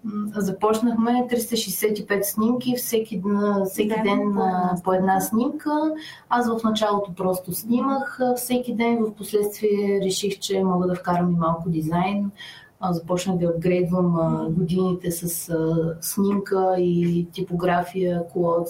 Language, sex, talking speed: Bulgarian, female, 115 wpm